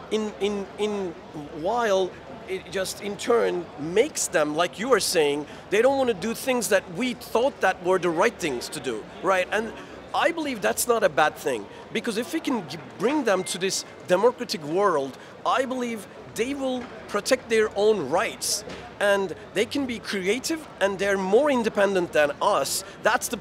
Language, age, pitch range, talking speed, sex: English, 40-59, 190-240 Hz, 180 wpm, male